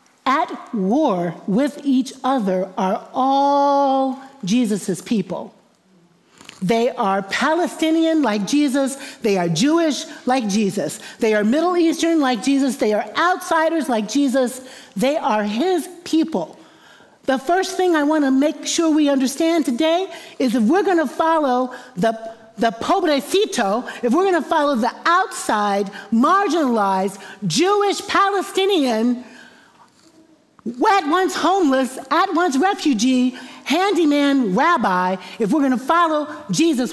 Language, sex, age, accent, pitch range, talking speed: English, female, 50-69, American, 225-320 Hz, 120 wpm